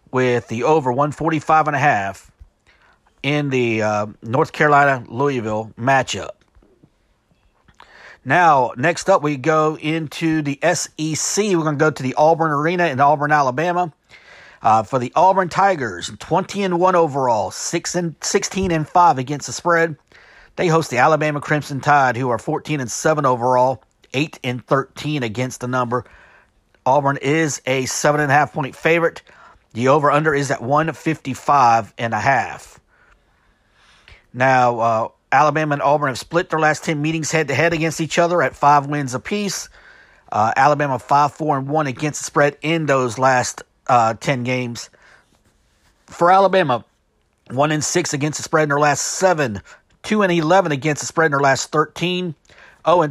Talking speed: 150 wpm